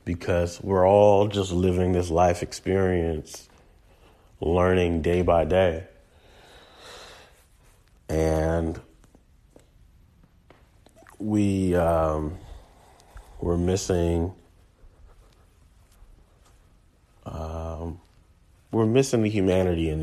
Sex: male